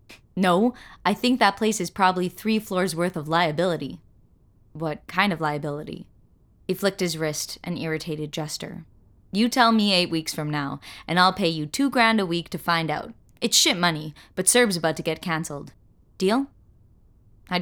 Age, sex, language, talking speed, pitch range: 20-39, female, English, 175 wpm, 155-190 Hz